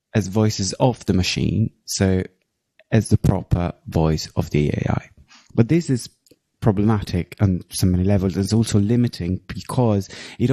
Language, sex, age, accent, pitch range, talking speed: English, male, 30-49, British, 95-120 Hz, 150 wpm